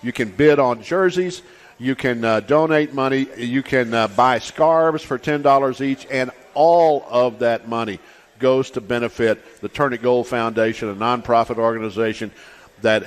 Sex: male